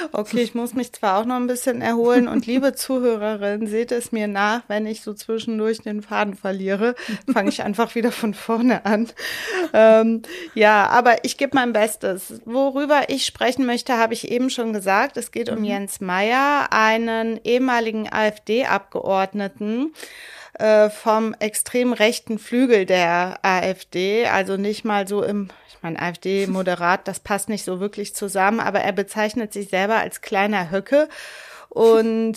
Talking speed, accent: 155 wpm, German